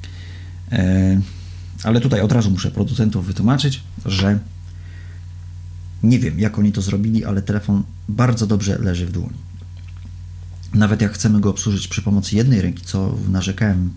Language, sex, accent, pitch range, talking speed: Polish, male, native, 90-110 Hz, 140 wpm